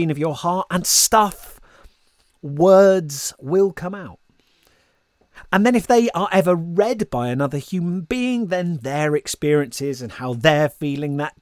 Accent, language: British, English